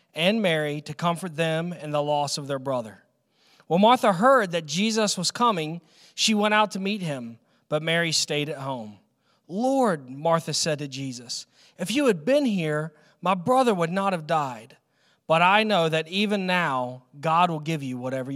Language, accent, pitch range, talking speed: English, American, 145-215 Hz, 185 wpm